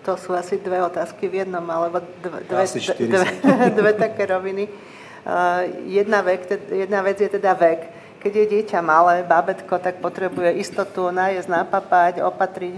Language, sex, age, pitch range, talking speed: Slovak, female, 40-59, 170-195 Hz, 155 wpm